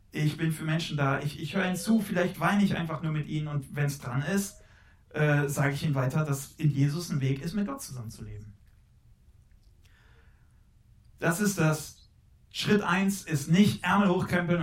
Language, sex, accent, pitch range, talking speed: German, male, German, 135-175 Hz, 185 wpm